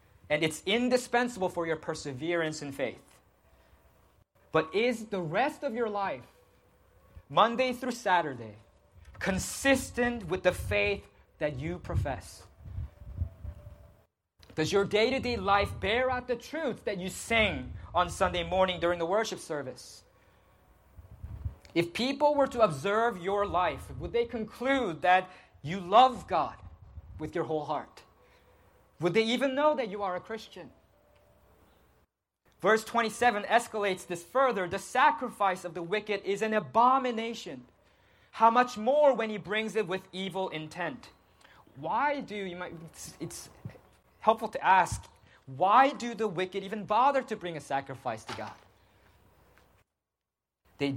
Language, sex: English, male